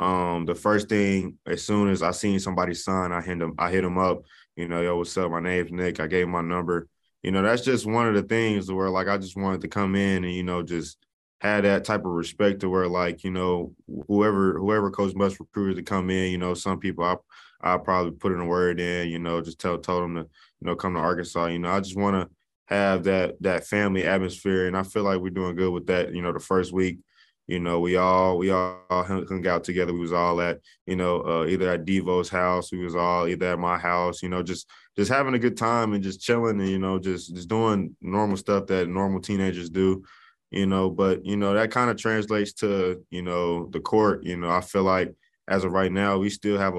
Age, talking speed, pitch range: 20-39, 250 wpm, 90-95 Hz